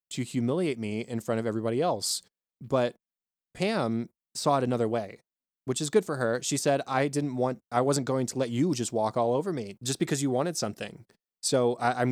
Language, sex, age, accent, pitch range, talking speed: English, male, 20-39, American, 115-130 Hz, 210 wpm